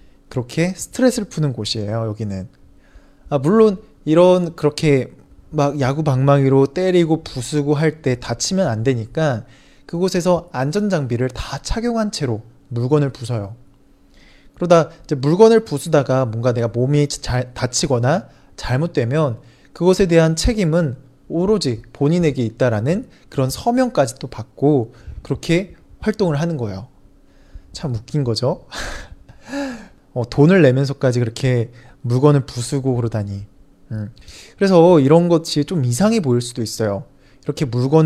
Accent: Korean